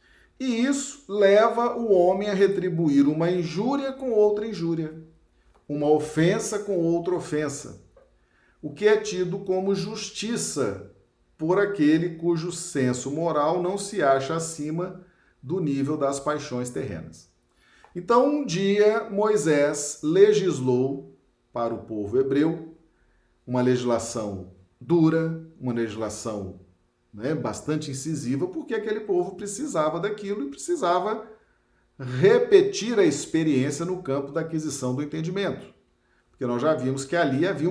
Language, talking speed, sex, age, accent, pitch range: Portuguese, 125 wpm, male, 40-59, Brazilian, 140-205 Hz